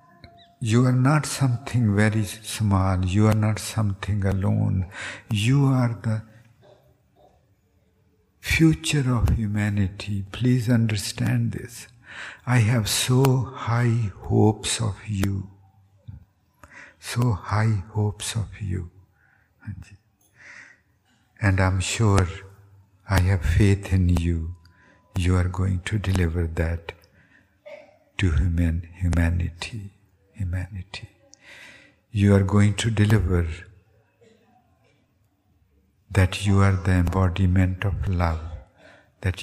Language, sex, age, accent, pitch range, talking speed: English, male, 60-79, Indian, 95-110 Hz, 95 wpm